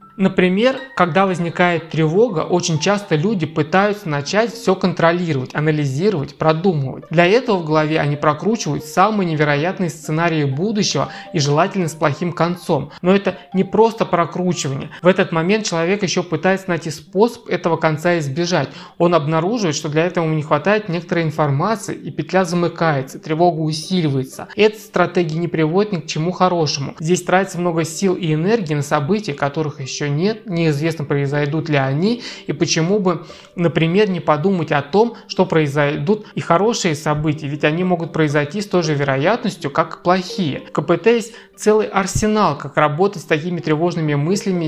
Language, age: Russian, 20-39